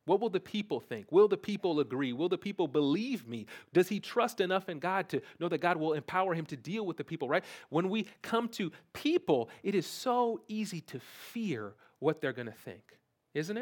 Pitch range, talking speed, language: 140-215 Hz, 220 wpm, English